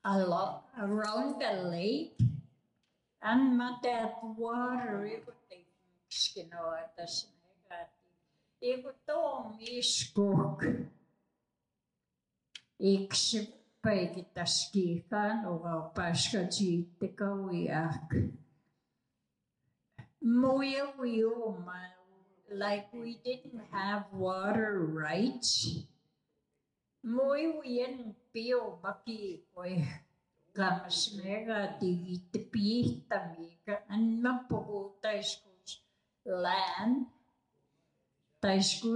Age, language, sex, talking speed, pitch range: 50-69, English, female, 35 wpm, 175-225 Hz